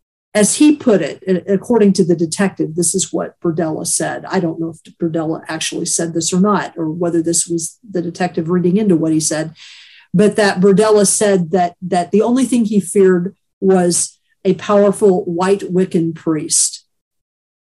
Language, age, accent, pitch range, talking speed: English, 50-69, American, 175-215 Hz, 175 wpm